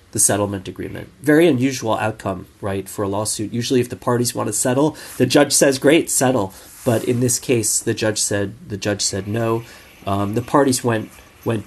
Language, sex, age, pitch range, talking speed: English, male, 30-49, 100-130 Hz, 195 wpm